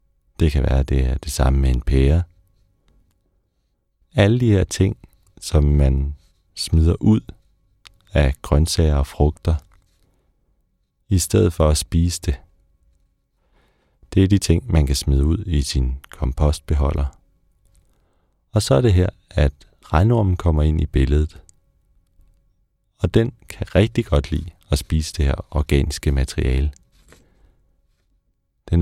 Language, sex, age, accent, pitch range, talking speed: Danish, male, 40-59, native, 75-90 Hz, 130 wpm